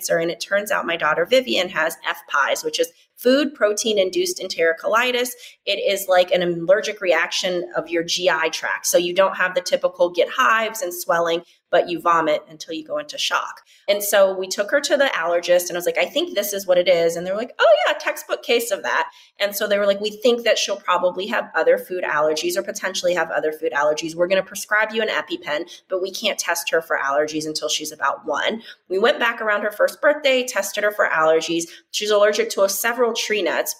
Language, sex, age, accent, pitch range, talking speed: English, female, 30-49, American, 170-225 Hz, 225 wpm